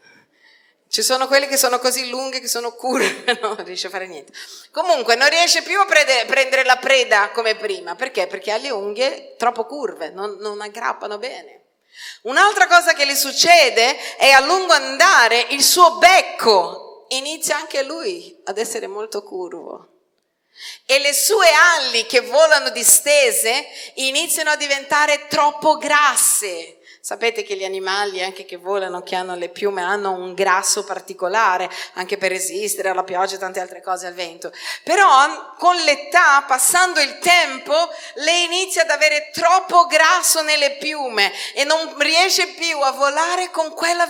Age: 40-59